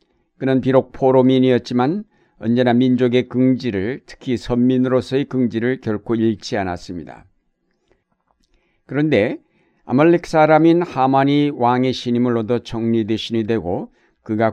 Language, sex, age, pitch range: Korean, male, 60-79, 115-130 Hz